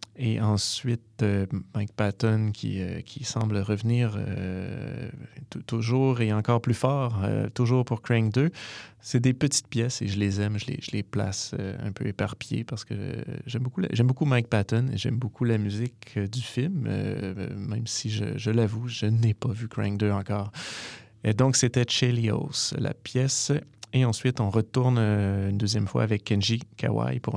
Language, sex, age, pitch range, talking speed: French, male, 30-49, 105-125 Hz, 190 wpm